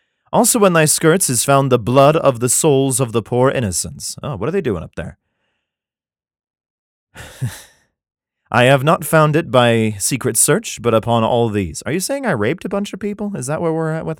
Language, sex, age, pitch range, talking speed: English, male, 30-49, 105-150 Hz, 205 wpm